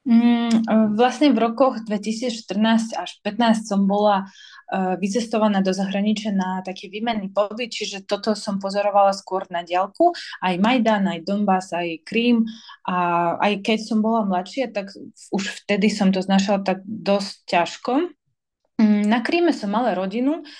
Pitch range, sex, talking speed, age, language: 185-220 Hz, female, 140 wpm, 20-39, Slovak